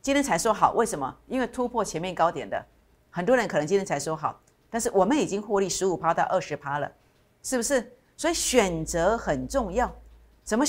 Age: 50-69